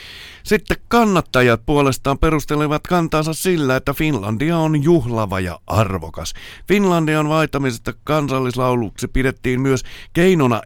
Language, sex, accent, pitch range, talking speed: Finnish, male, native, 105-150 Hz, 100 wpm